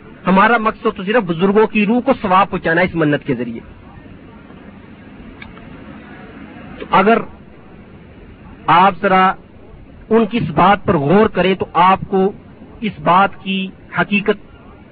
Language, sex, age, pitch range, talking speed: Urdu, male, 50-69, 185-230 Hz, 135 wpm